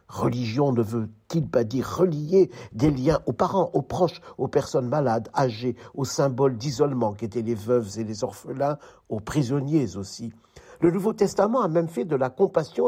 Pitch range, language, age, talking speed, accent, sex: 130-175 Hz, French, 60-79, 170 wpm, French, male